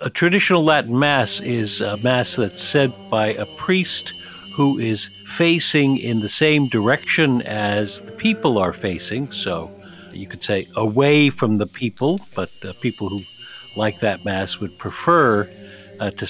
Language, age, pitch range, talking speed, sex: English, 50-69, 105-135 Hz, 155 wpm, male